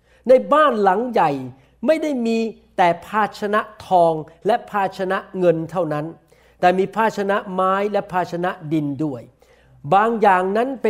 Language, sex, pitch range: Thai, male, 170-225 Hz